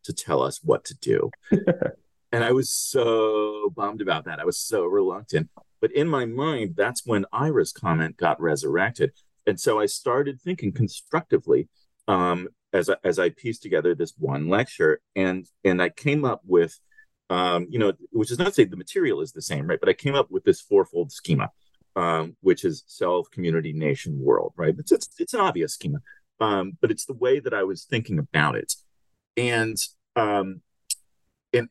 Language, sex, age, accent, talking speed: English, male, 40-59, American, 185 wpm